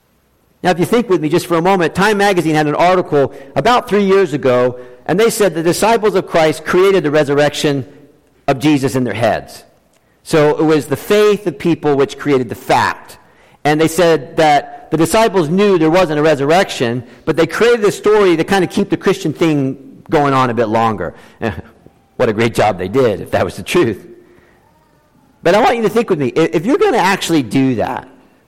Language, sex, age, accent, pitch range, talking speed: English, male, 50-69, American, 145-195 Hz, 210 wpm